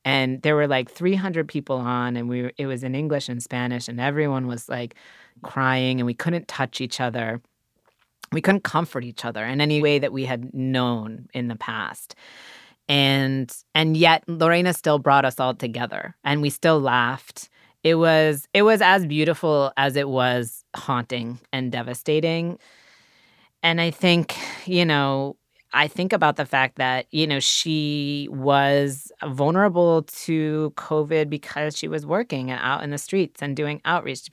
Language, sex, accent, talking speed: English, female, American, 170 wpm